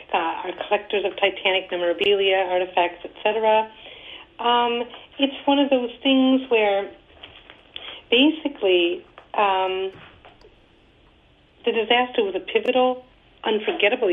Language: English